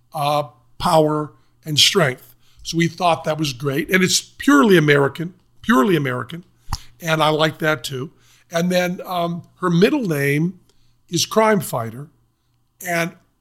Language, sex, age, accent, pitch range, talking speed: English, male, 50-69, American, 135-175 Hz, 140 wpm